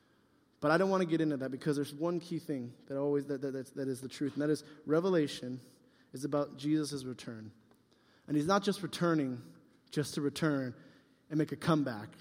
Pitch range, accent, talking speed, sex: 130-155 Hz, American, 200 wpm, male